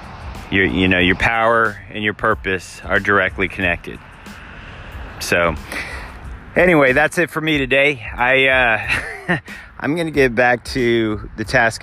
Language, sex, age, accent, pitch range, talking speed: English, male, 30-49, American, 95-120 Hz, 140 wpm